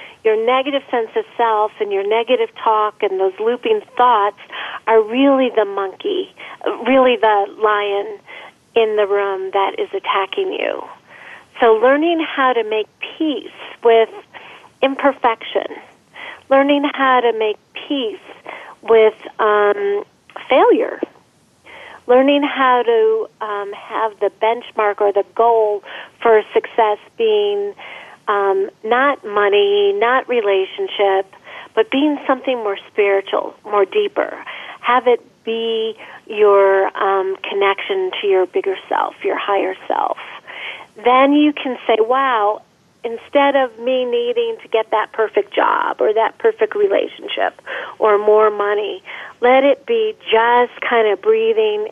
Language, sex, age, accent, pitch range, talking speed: English, female, 40-59, American, 210-305 Hz, 125 wpm